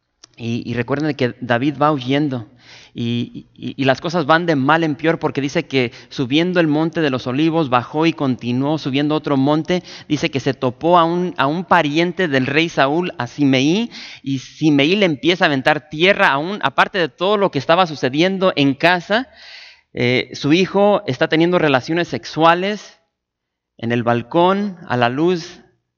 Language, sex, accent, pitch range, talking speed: English, male, Mexican, 130-170 Hz, 170 wpm